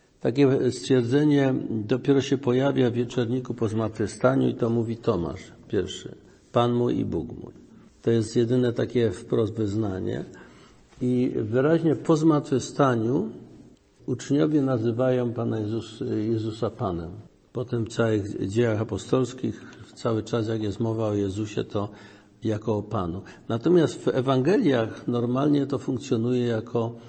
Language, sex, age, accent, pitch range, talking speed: Polish, male, 50-69, native, 110-135 Hz, 130 wpm